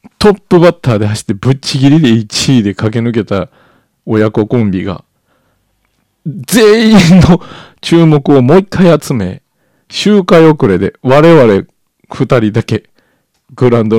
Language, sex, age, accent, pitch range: Japanese, male, 40-59, native, 110-175 Hz